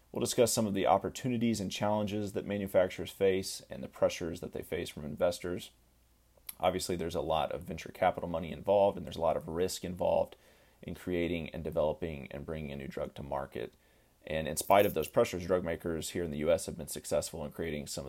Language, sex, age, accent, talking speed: English, male, 30-49, American, 210 wpm